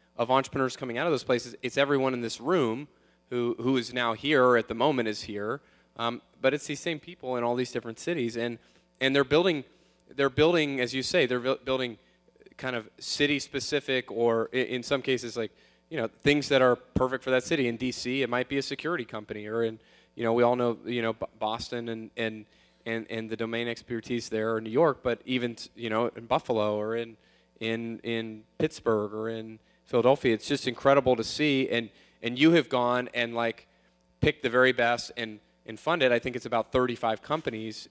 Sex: male